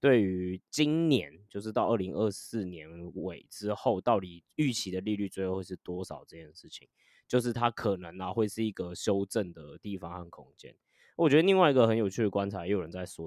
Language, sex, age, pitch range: Chinese, male, 20-39, 100-130 Hz